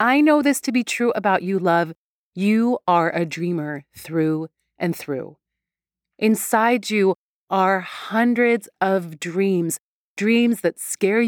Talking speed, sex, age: 135 wpm, female, 30-49